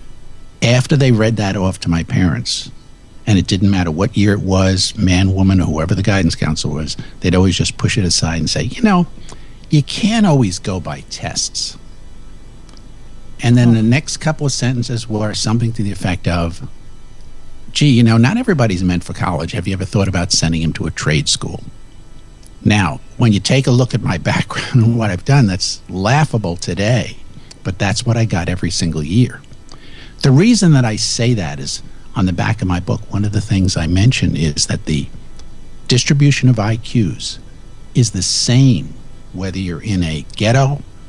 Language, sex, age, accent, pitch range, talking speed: English, male, 50-69, American, 90-125 Hz, 190 wpm